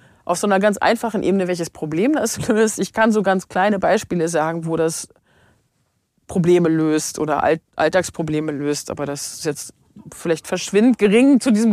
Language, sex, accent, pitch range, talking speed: German, female, German, 165-205 Hz, 170 wpm